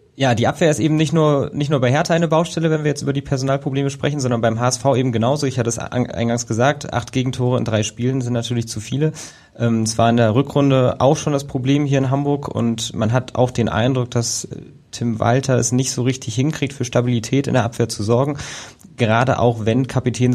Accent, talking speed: German, 225 wpm